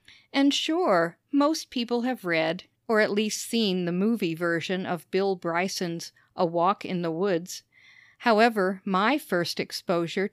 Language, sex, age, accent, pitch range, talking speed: English, female, 50-69, American, 170-215 Hz, 145 wpm